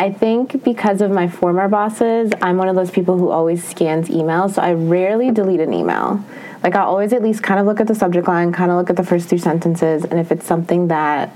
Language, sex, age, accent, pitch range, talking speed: English, female, 20-39, American, 155-185 Hz, 250 wpm